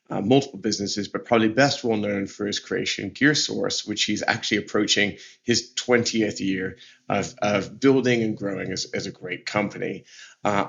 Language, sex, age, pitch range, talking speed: English, male, 30-49, 105-125 Hz, 170 wpm